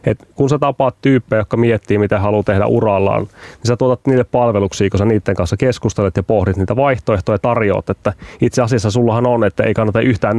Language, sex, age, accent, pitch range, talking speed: Finnish, male, 30-49, native, 105-130 Hz, 200 wpm